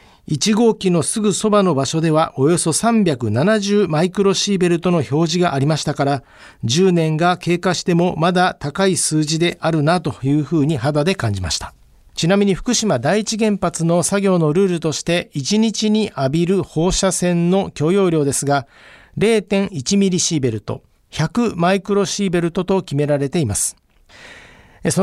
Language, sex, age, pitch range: Japanese, male, 50-69, 150-200 Hz